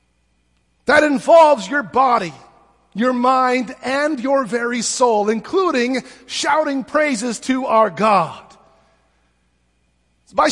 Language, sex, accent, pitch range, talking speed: English, male, American, 160-255 Hz, 95 wpm